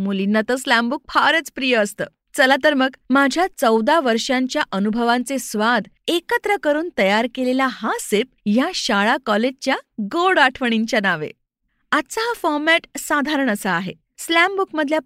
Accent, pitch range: native, 210-300 Hz